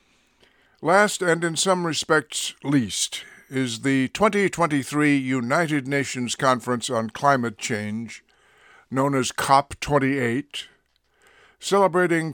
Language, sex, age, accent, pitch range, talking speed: English, male, 60-79, American, 120-150 Hz, 90 wpm